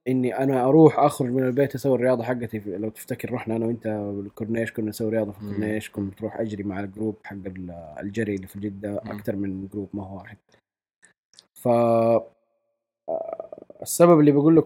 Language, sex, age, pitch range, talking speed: Arabic, male, 20-39, 100-130 Hz, 170 wpm